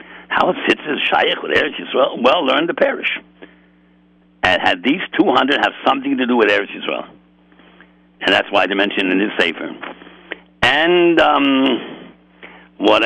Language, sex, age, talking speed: English, male, 70-89, 150 wpm